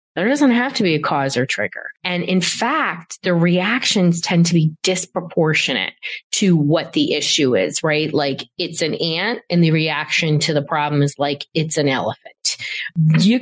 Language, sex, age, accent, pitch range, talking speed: English, female, 30-49, American, 155-205 Hz, 180 wpm